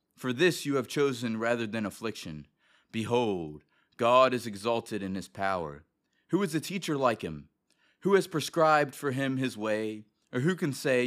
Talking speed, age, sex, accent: 175 wpm, 30-49, male, American